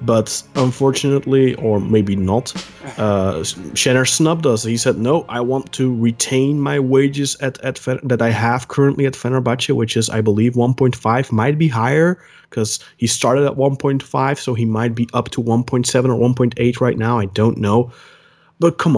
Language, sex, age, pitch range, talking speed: English, male, 20-39, 115-140 Hz, 175 wpm